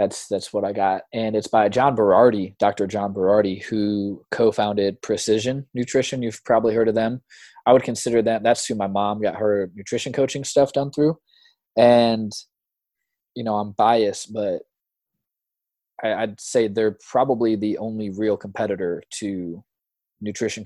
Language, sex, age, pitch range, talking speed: English, male, 20-39, 105-130 Hz, 155 wpm